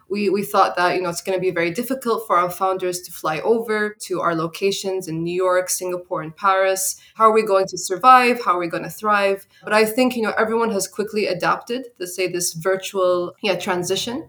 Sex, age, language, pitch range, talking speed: female, 20-39, English, 185-220 Hz, 225 wpm